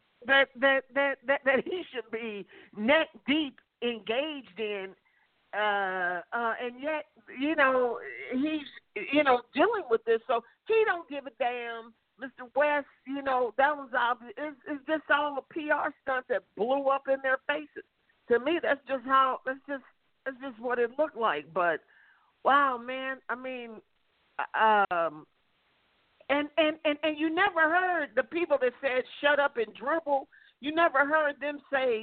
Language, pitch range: English, 230-300 Hz